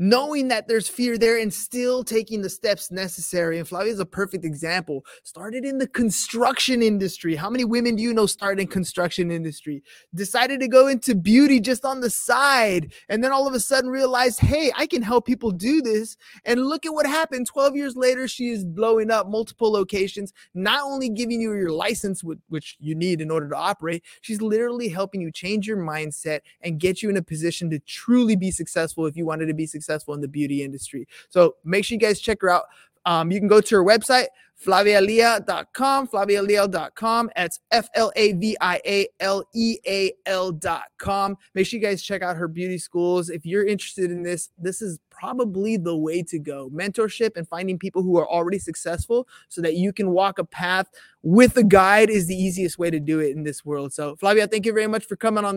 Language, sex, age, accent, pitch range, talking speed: English, male, 20-39, American, 175-230 Hz, 200 wpm